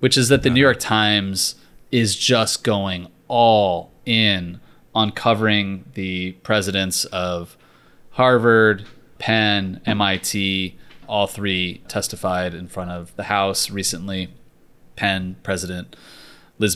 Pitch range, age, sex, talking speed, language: 95-115 Hz, 30-49, male, 115 wpm, English